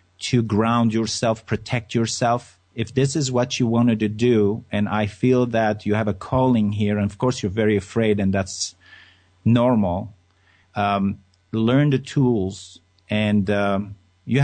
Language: English